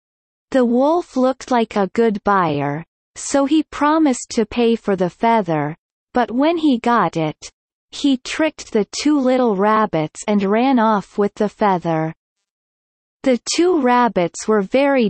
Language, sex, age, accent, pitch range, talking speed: Danish, female, 40-59, American, 200-255 Hz, 145 wpm